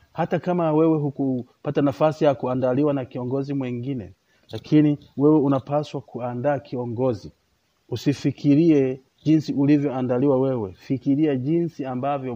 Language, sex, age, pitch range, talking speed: Swahili, male, 40-59, 115-135 Hz, 105 wpm